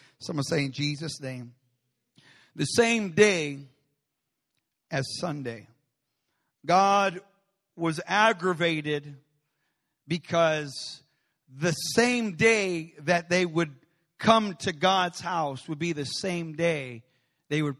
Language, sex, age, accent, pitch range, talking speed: English, male, 40-59, American, 155-215 Hz, 105 wpm